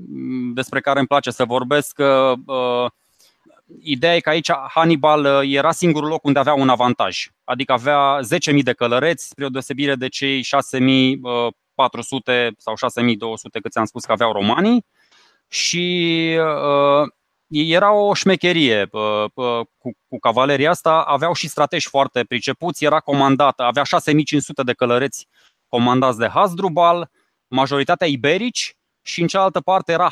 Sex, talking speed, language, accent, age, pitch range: male, 145 wpm, Romanian, native, 20-39, 120-155 Hz